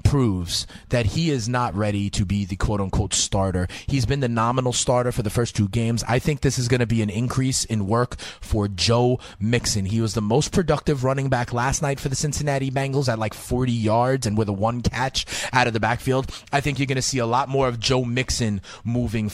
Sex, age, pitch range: male, 30-49, 110-145 Hz